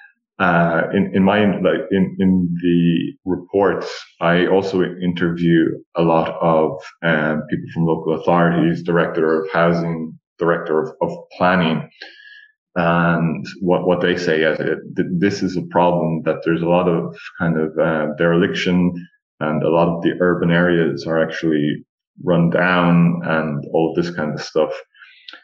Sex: male